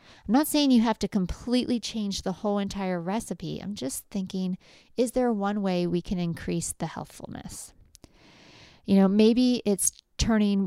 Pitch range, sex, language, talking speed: 170-205 Hz, female, English, 165 wpm